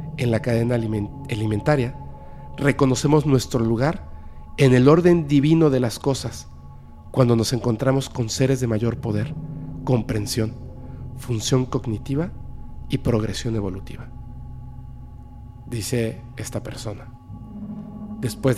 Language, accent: Spanish, Mexican